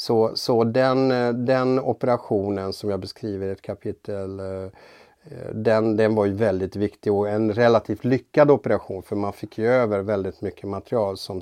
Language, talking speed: Swedish, 165 wpm